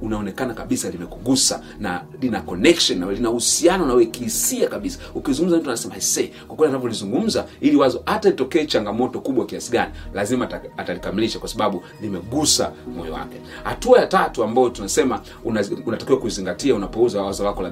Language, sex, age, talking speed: Swahili, male, 40-59, 160 wpm